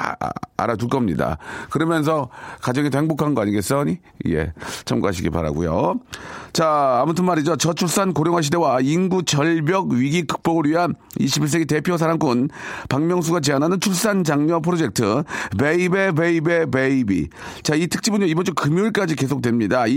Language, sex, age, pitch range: Korean, male, 40-59, 135-170 Hz